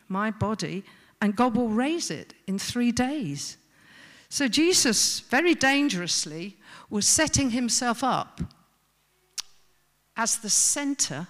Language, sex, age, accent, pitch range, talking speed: English, female, 50-69, British, 160-235 Hz, 110 wpm